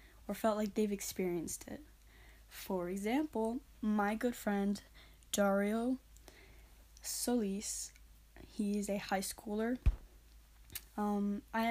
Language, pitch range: English, 190-220 Hz